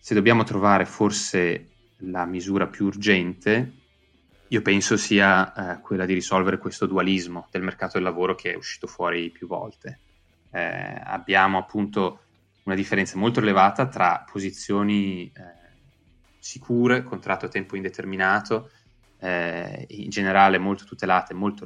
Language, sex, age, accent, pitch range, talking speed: Italian, male, 20-39, native, 90-105 Hz, 135 wpm